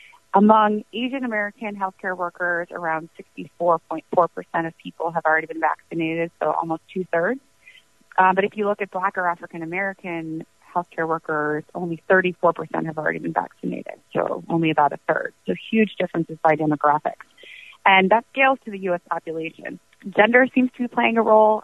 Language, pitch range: English, 160-195 Hz